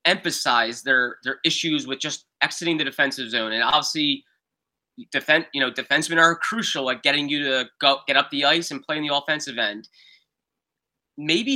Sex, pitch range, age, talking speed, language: male, 150-220 Hz, 20-39, 175 wpm, English